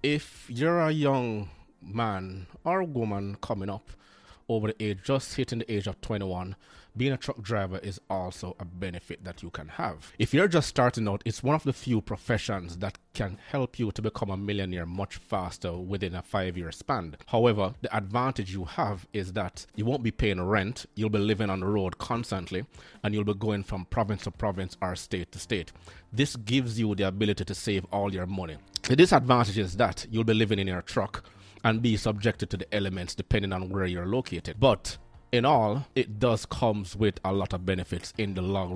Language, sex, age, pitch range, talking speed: English, male, 30-49, 95-115 Hz, 205 wpm